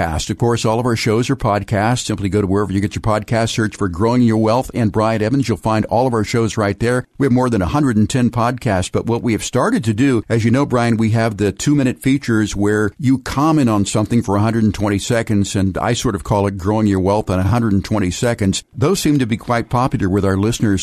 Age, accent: 50-69, American